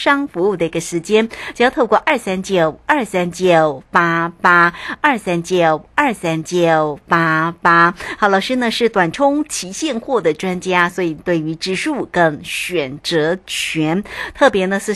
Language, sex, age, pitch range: Chinese, female, 60-79, 170-220 Hz